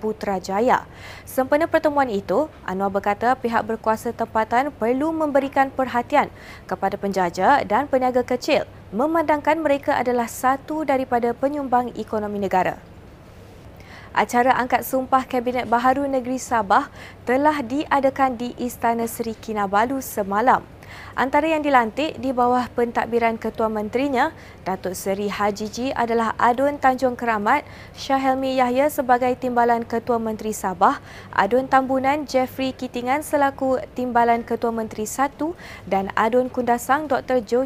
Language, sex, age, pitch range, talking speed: Malay, female, 20-39, 220-265 Hz, 120 wpm